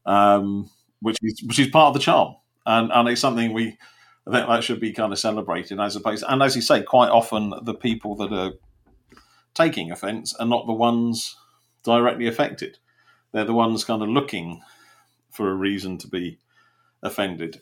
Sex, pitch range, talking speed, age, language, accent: male, 105-125 Hz, 185 wpm, 40-59, English, British